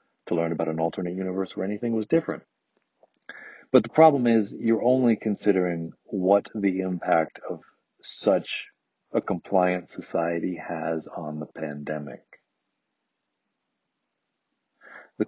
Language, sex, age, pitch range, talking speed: English, male, 40-59, 85-100 Hz, 120 wpm